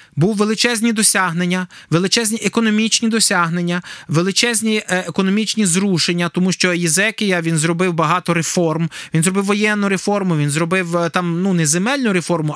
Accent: native